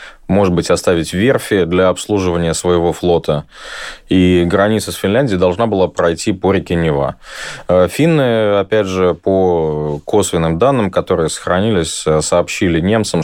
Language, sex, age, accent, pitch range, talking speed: Russian, male, 20-39, native, 80-100 Hz, 125 wpm